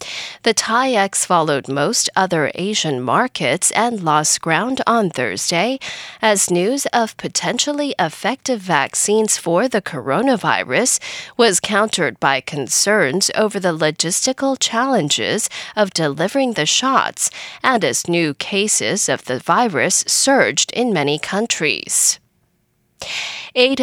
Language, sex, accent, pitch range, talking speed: English, female, American, 165-240 Hz, 115 wpm